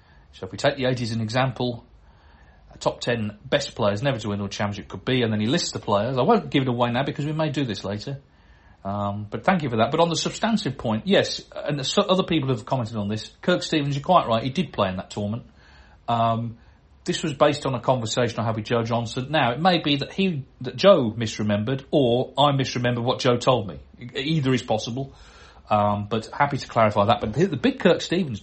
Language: English